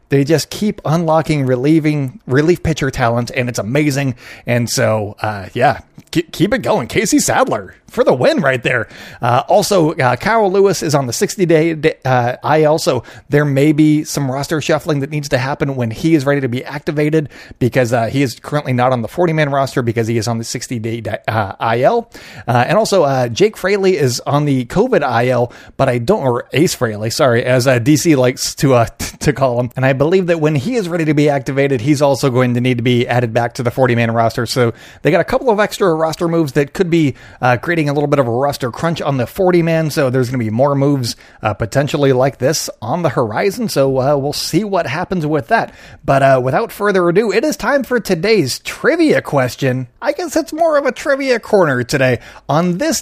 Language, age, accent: English, 30-49, American